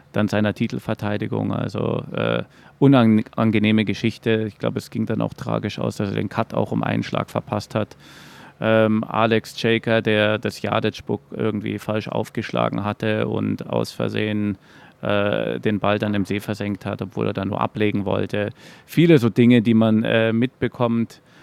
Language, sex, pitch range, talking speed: German, male, 105-120 Hz, 165 wpm